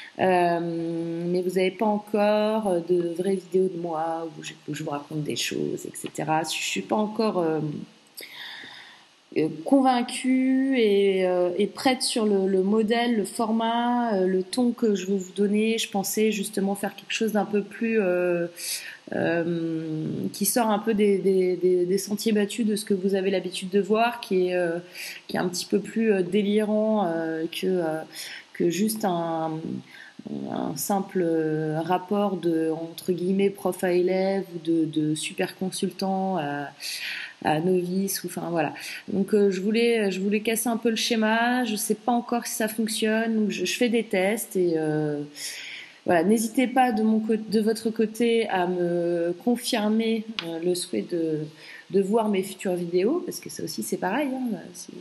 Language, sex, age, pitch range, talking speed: French, female, 30-49, 170-220 Hz, 180 wpm